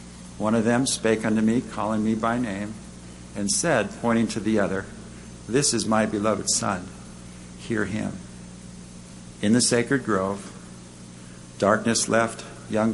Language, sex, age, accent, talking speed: English, male, 60-79, American, 140 wpm